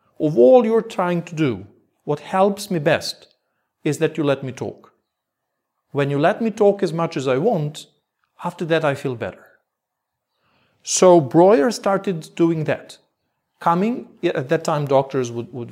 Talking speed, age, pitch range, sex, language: 165 wpm, 40-59, 135-190 Hz, male, English